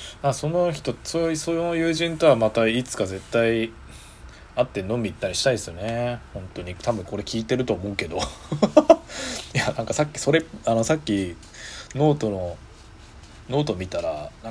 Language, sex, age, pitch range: Japanese, male, 20-39, 95-145 Hz